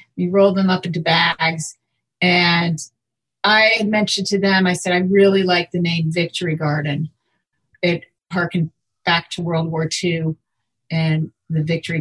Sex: female